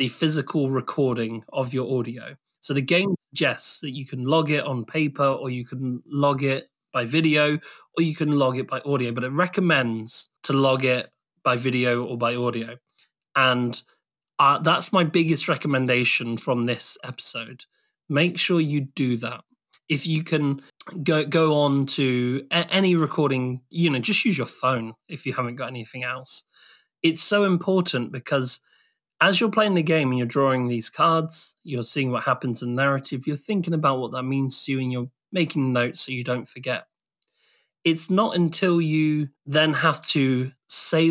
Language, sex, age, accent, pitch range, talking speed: English, male, 30-49, British, 125-160 Hz, 180 wpm